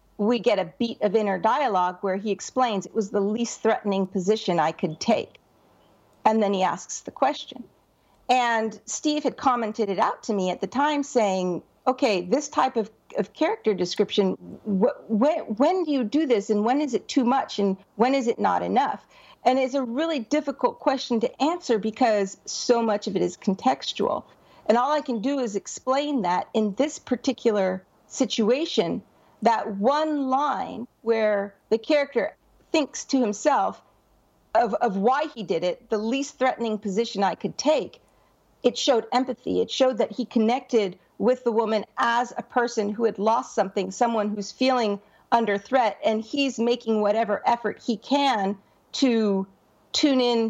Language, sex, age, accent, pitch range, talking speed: English, female, 50-69, American, 205-260 Hz, 170 wpm